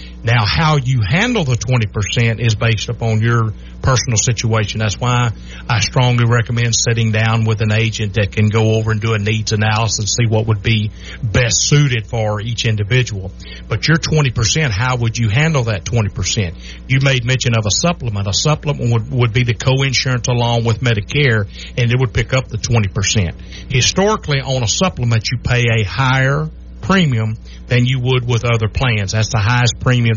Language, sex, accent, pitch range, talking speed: English, male, American, 110-125 Hz, 185 wpm